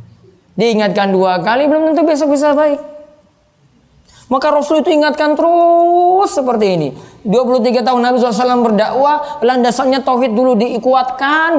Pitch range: 185-275 Hz